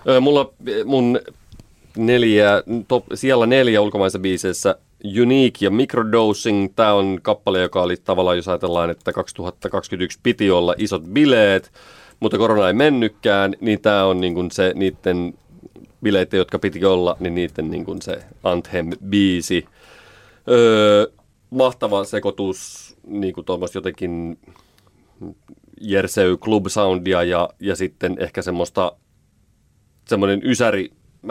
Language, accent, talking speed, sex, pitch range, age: Finnish, native, 115 wpm, male, 90-115 Hz, 30-49